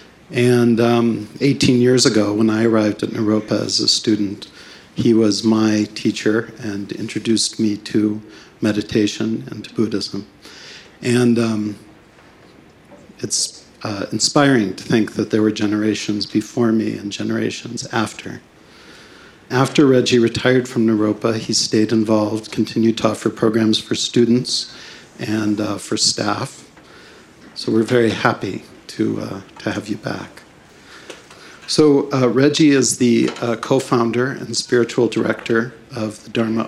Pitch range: 110-120 Hz